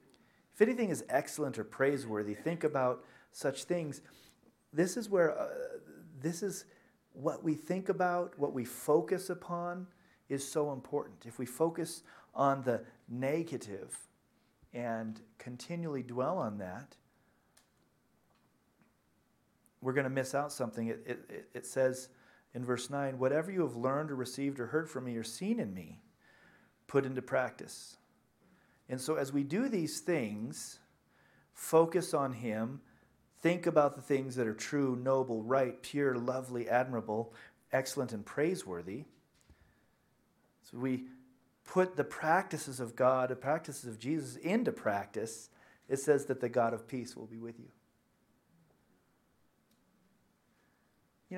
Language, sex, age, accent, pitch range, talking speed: English, male, 40-59, American, 125-160 Hz, 140 wpm